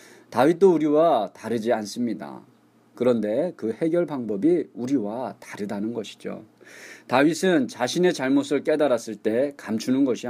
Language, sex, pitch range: Korean, male, 115-180 Hz